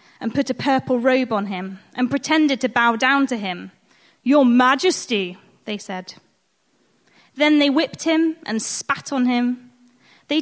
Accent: British